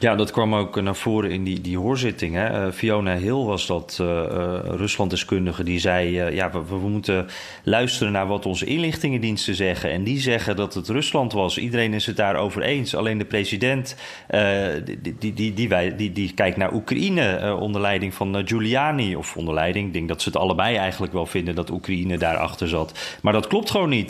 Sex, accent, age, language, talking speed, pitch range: male, Dutch, 30-49, Dutch, 205 wpm, 95-125 Hz